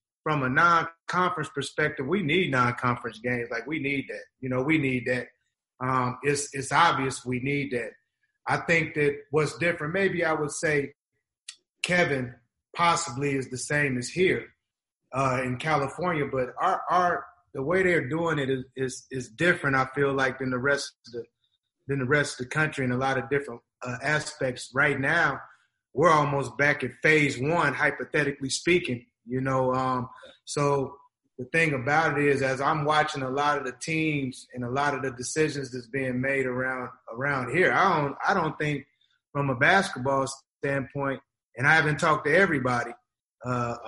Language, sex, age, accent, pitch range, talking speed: English, male, 30-49, American, 130-150 Hz, 180 wpm